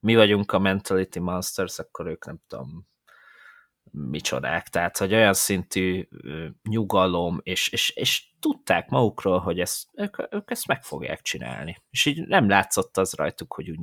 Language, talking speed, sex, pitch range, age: Hungarian, 160 wpm, male, 90-115 Hz, 30-49